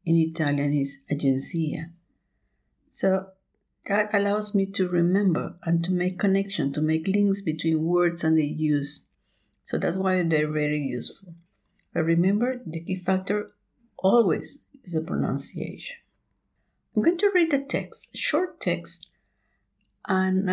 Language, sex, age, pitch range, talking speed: Spanish, female, 50-69, 160-215 Hz, 135 wpm